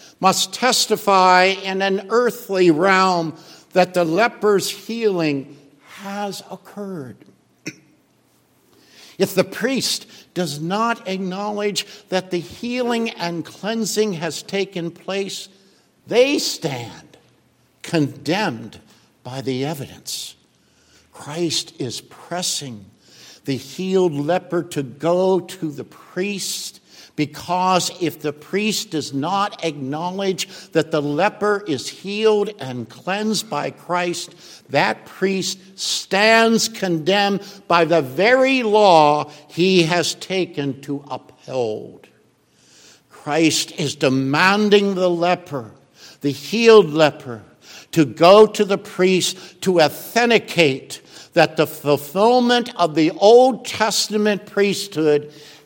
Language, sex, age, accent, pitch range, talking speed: English, male, 60-79, American, 155-200 Hz, 100 wpm